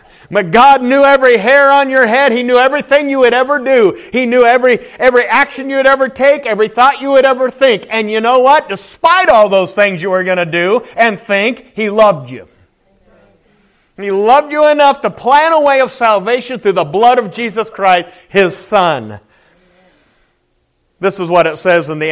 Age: 40-59